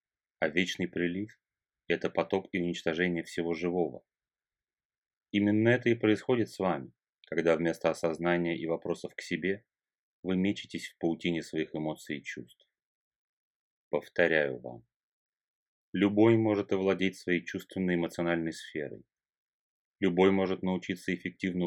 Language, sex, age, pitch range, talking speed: Russian, male, 30-49, 85-100 Hz, 120 wpm